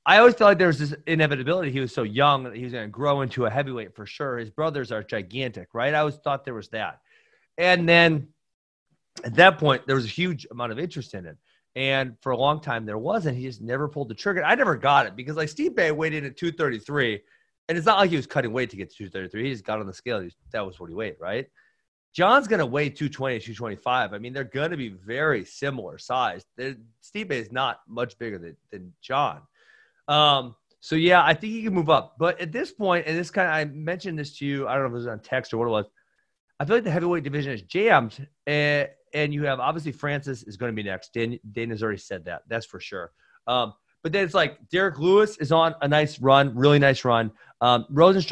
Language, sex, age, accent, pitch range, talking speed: English, male, 30-49, American, 120-160 Hz, 245 wpm